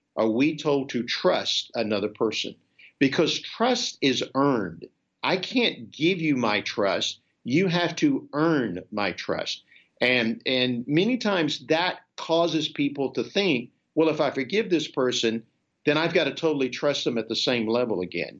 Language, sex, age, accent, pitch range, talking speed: English, male, 50-69, American, 130-180 Hz, 165 wpm